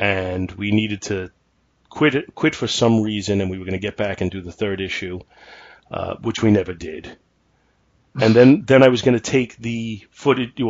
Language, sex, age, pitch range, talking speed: English, male, 30-49, 100-120 Hz, 200 wpm